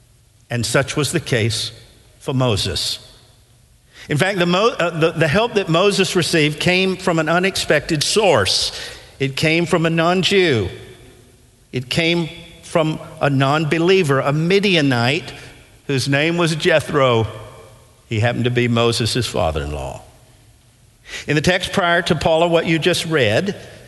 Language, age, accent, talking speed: English, 50-69, American, 130 wpm